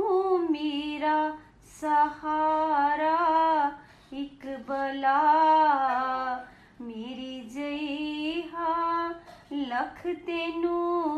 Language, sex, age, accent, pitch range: Hindi, female, 30-49, native, 265-320 Hz